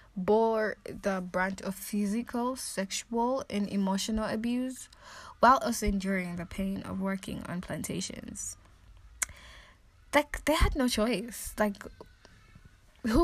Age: 10-29